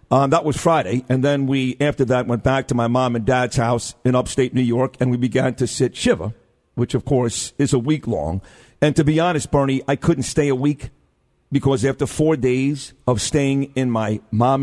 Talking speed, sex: 220 wpm, male